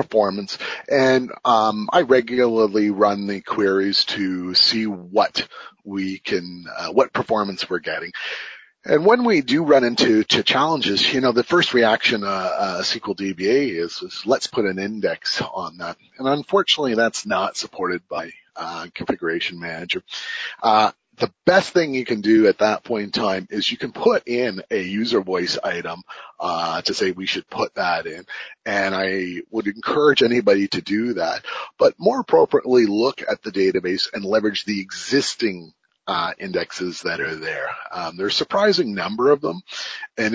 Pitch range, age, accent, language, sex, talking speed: 95-135 Hz, 30-49, American, English, male, 170 wpm